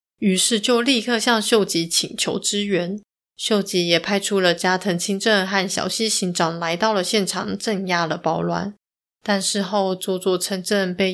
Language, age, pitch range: Chinese, 30-49, 175-210 Hz